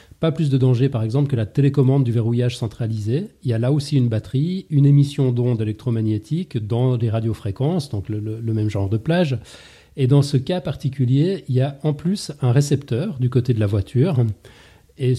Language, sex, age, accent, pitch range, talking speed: French, male, 40-59, French, 115-145 Hz, 205 wpm